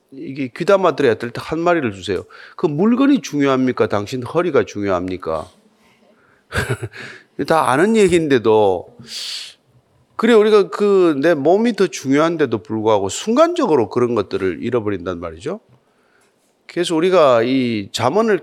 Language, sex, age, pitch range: Korean, male, 30-49, 110-175 Hz